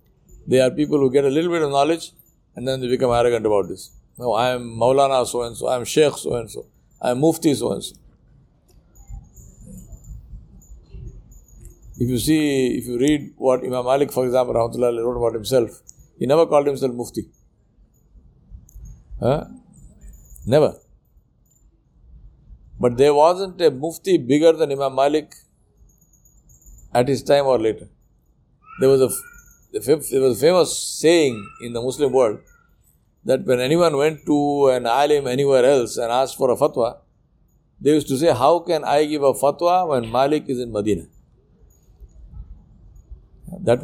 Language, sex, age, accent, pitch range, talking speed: English, male, 60-79, Indian, 120-150 Hz, 150 wpm